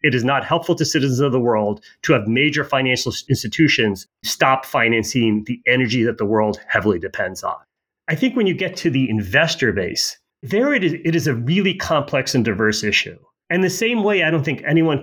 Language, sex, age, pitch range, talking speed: English, male, 30-49, 125-175 Hz, 210 wpm